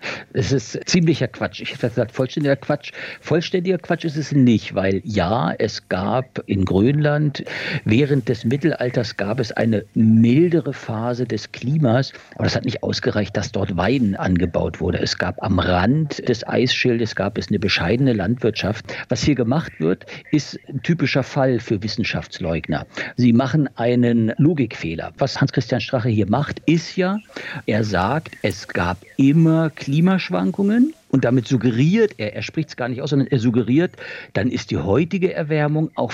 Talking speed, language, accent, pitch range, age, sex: 165 wpm, German, German, 115-155 Hz, 50-69, male